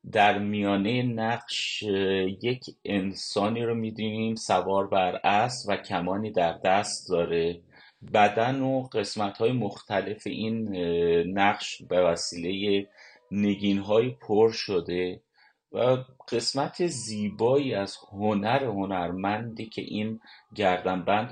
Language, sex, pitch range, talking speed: Persian, male, 95-115 Hz, 100 wpm